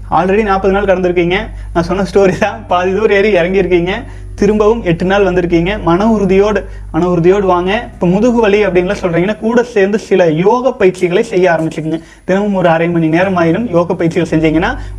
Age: 20-39